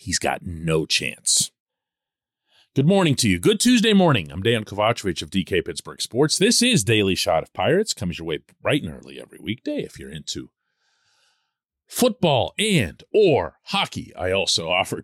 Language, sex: English, male